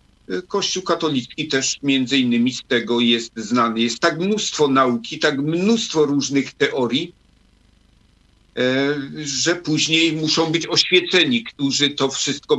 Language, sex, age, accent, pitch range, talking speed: Polish, male, 50-69, native, 130-160 Hz, 120 wpm